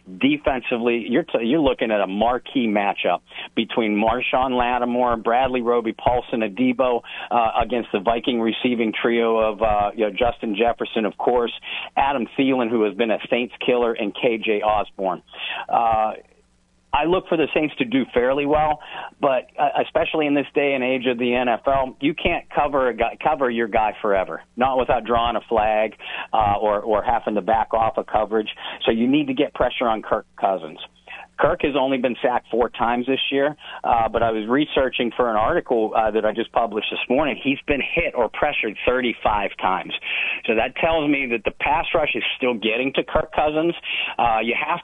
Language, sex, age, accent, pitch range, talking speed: English, male, 50-69, American, 110-130 Hz, 190 wpm